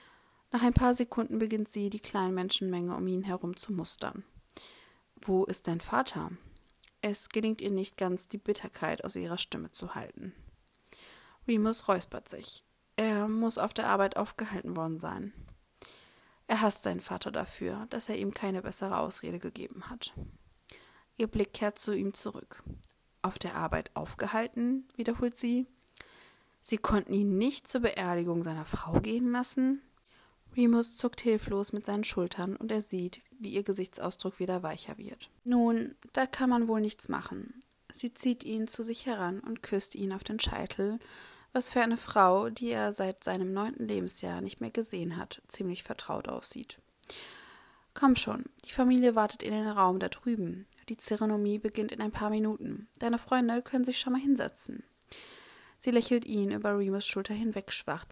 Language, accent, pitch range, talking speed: German, German, 195-240 Hz, 165 wpm